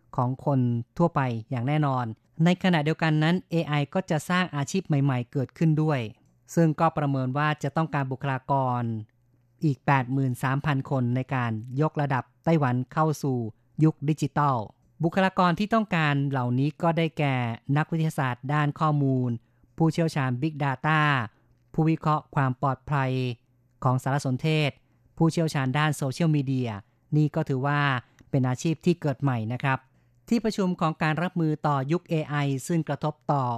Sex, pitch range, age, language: female, 130-155 Hz, 30-49, Thai